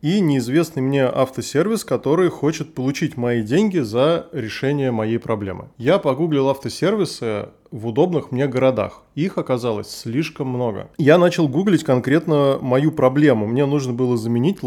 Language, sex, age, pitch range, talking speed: Russian, male, 20-39, 115-150 Hz, 140 wpm